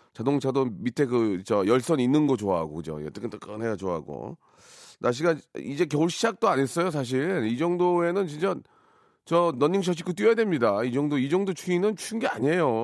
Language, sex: Korean, male